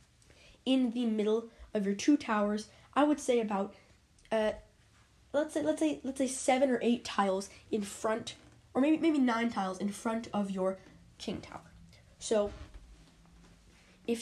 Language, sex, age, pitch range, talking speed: English, female, 10-29, 210-270 Hz, 155 wpm